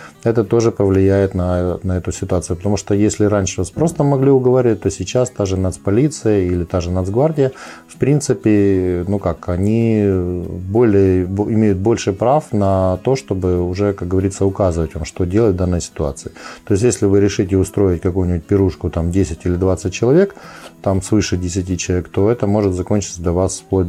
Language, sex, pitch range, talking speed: Ukrainian, male, 95-115 Hz, 175 wpm